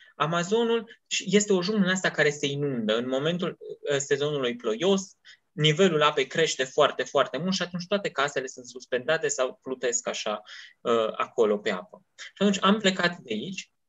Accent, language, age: native, Romanian, 20-39